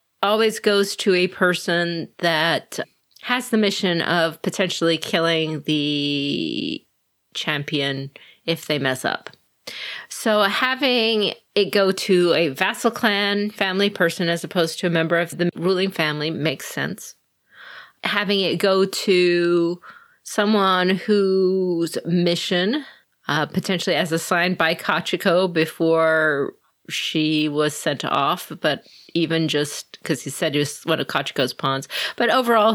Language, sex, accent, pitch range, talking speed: English, female, American, 155-195 Hz, 130 wpm